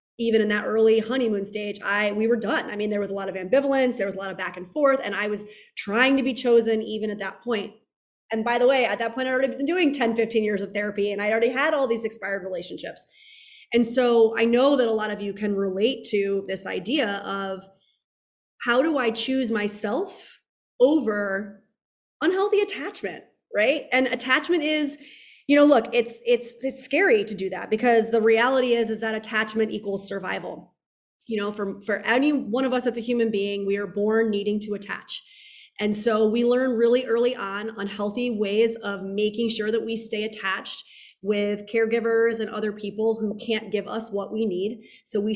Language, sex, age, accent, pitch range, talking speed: English, female, 30-49, American, 205-250 Hz, 205 wpm